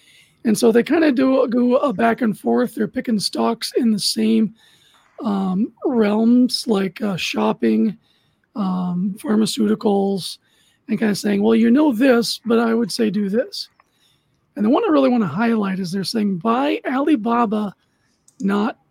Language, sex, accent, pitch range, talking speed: English, male, American, 200-240 Hz, 165 wpm